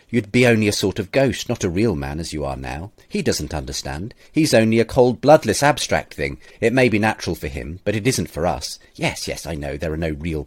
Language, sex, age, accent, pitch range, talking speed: English, male, 40-59, British, 80-110 Hz, 250 wpm